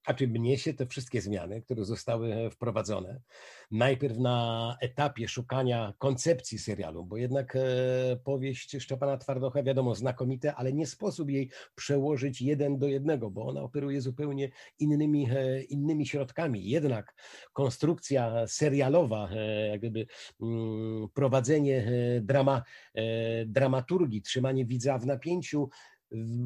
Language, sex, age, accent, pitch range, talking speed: Polish, male, 50-69, native, 120-145 Hz, 110 wpm